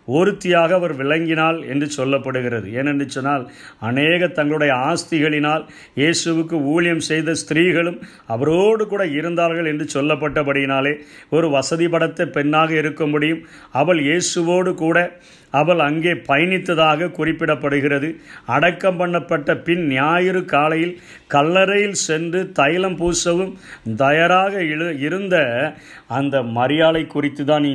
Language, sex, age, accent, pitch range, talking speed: Tamil, male, 50-69, native, 140-170 Hz, 95 wpm